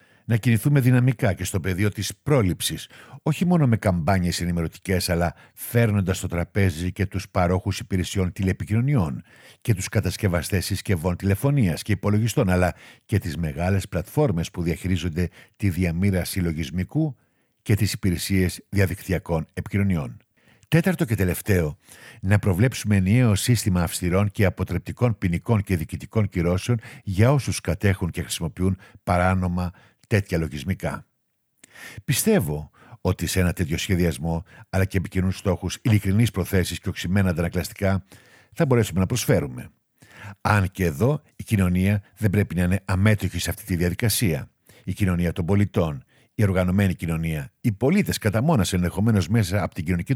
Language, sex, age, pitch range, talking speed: Greek, male, 60-79, 90-110 Hz, 140 wpm